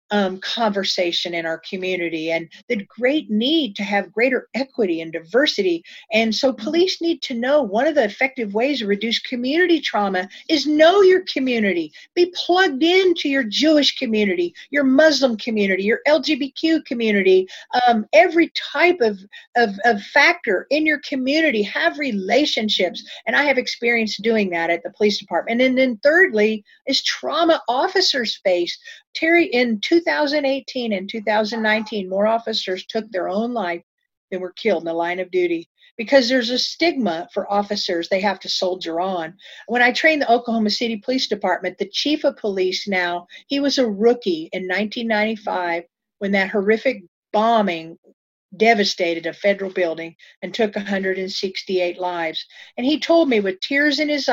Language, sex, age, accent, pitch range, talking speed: English, female, 50-69, American, 195-285 Hz, 160 wpm